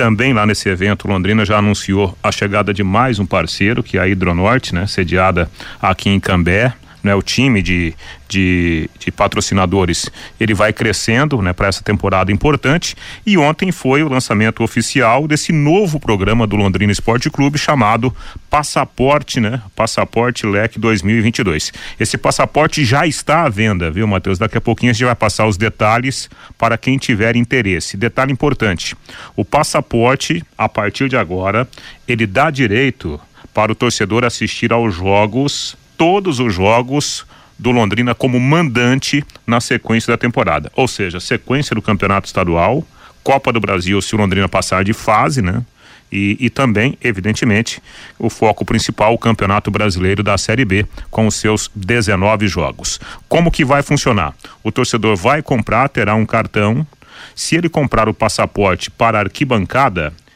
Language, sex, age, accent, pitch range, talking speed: Portuguese, male, 40-59, Brazilian, 100-130 Hz, 155 wpm